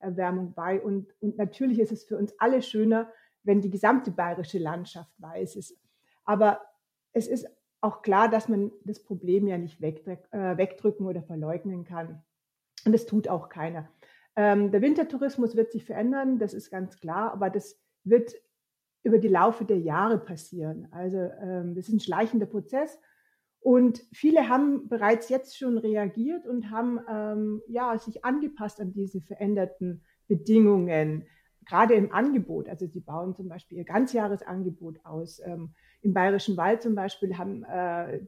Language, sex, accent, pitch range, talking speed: German, female, German, 185-225 Hz, 160 wpm